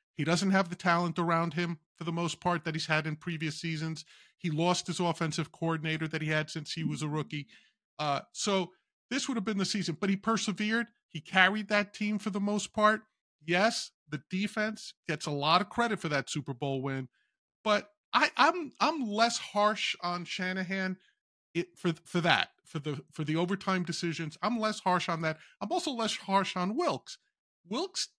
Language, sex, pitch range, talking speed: English, male, 160-210 Hz, 195 wpm